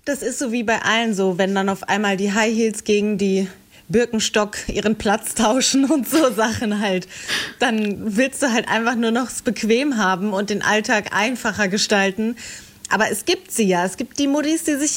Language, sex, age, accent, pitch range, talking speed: German, female, 30-49, German, 205-250 Hz, 200 wpm